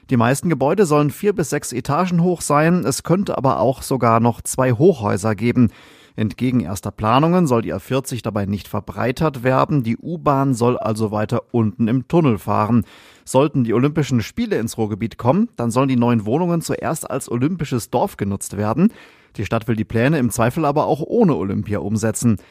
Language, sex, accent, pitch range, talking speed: German, male, German, 110-145 Hz, 180 wpm